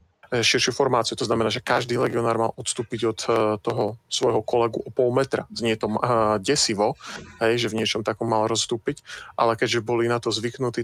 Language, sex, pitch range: Slovak, male, 110-120 Hz